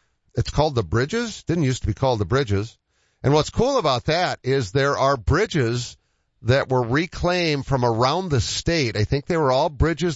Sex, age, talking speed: male, 50-69, 195 wpm